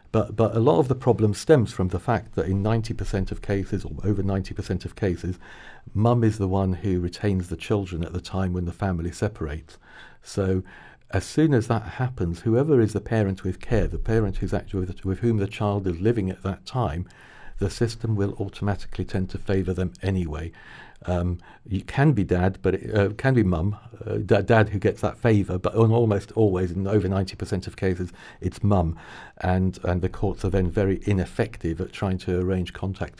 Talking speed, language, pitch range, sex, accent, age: 205 wpm, English, 90-110 Hz, male, British, 50-69